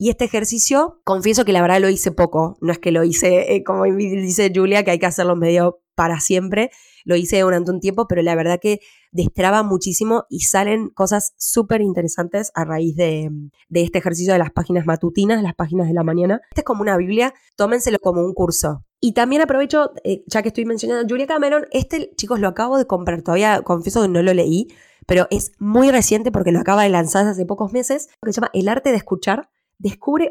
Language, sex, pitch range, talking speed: Spanish, female, 180-225 Hz, 220 wpm